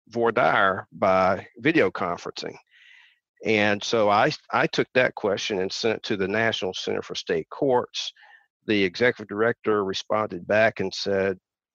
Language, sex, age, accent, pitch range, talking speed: English, male, 50-69, American, 100-120 Hz, 150 wpm